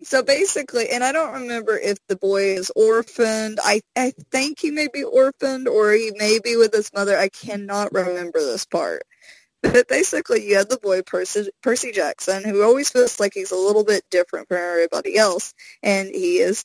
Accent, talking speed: American, 195 wpm